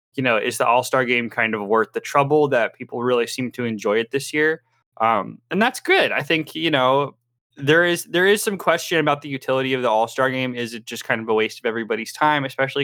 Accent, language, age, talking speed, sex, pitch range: American, English, 20-39, 245 wpm, male, 115-145 Hz